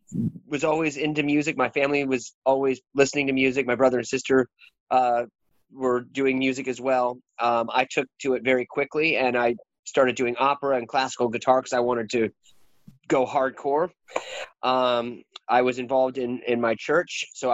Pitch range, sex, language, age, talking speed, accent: 120-140 Hz, male, English, 30-49, 175 wpm, American